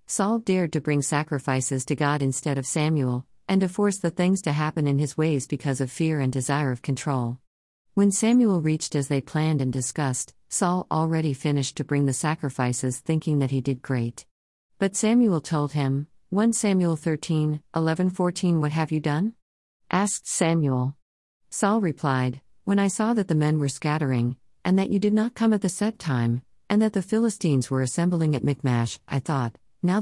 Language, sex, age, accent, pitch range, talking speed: English, female, 50-69, American, 135-180 Hz, 185 wpm